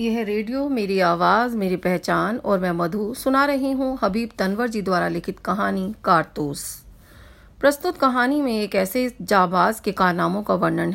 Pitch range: 190-245 Hz